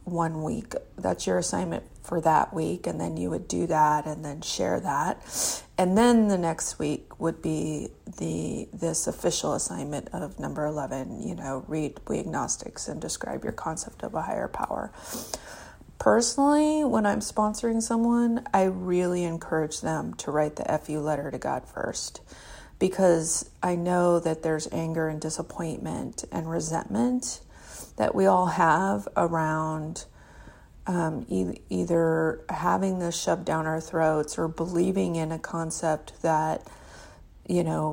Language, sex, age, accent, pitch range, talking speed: English, female, 30-49, American, 155-180 Hz, 145 wpm